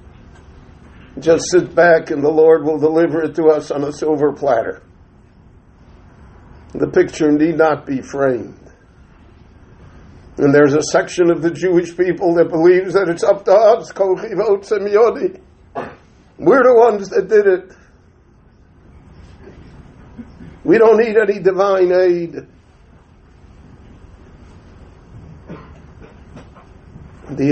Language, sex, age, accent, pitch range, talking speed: English, male, 60-79, American, 125-170 Hz, 105 wpm